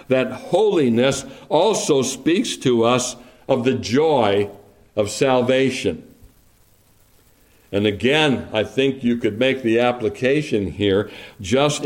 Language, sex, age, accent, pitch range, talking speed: English, male, 60-79, American, 110-145 Hz, 110 wpm